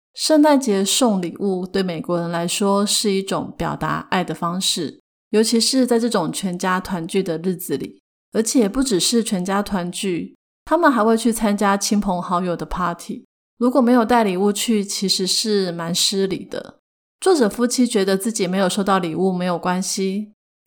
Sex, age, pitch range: female, 30-49, 180-220 Hz